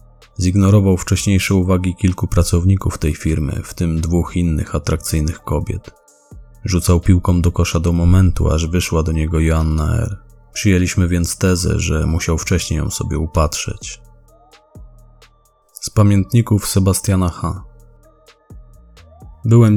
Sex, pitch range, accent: male, 85-105 Hz, native